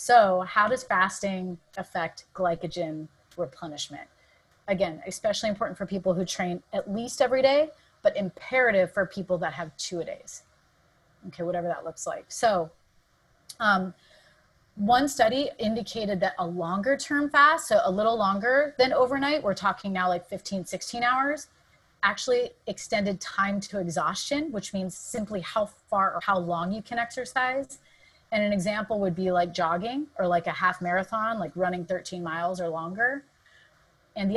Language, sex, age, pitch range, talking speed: English, female, 30-49, 185-250 Hz, 160 wpm